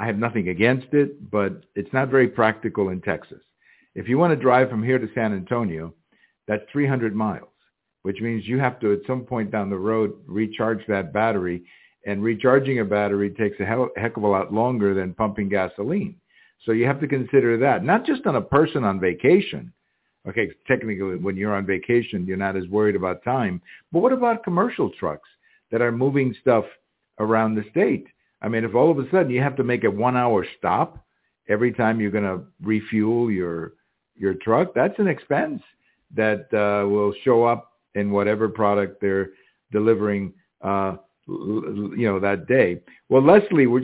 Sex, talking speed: male, 180 wpm